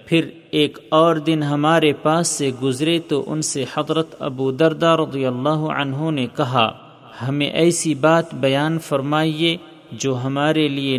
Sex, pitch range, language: male, 135-160 Hz, Urdu